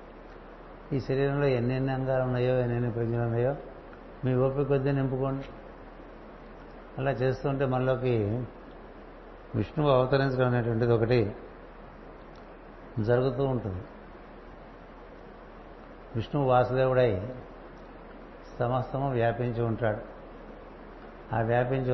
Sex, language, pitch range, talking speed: male, Telugu, 120-135 Hz, 75 wpm